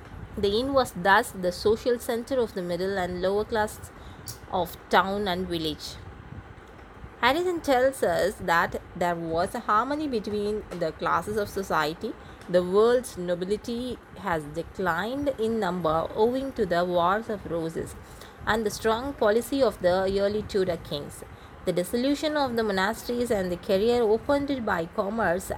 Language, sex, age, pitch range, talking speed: Tamil, female, 20-39, 175-230 Hz, 150 wpm